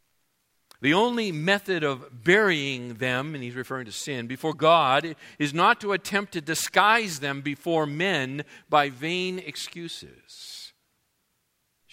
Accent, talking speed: American, 130 wpm